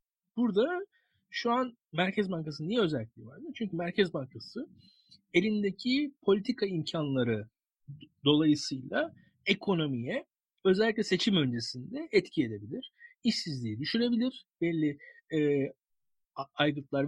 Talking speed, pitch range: 90 wpm, 145-230 Hz